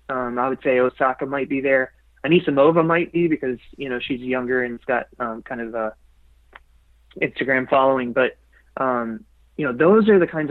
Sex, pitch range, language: male, 120-145 Hz, English